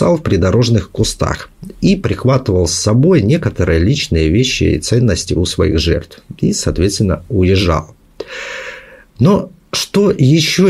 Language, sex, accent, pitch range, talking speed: Russian, male, native, 95-150 Hz, 120 wpm